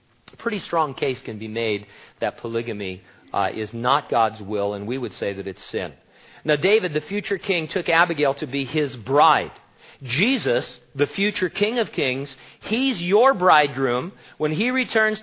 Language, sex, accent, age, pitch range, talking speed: English, male, American, 40-59, 125-170 Hz, 175 wpm